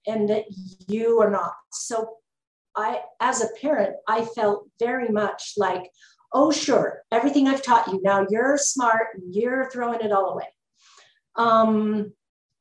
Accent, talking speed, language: American, 145 wpm, English